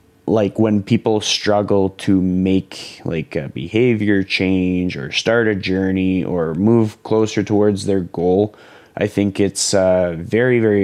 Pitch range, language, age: 95-110 Hz, English, 20-39